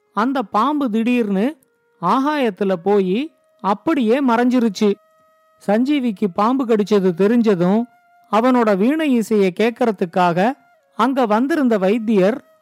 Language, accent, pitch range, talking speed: Tamil, native, 205-270 Hz, 85 wpm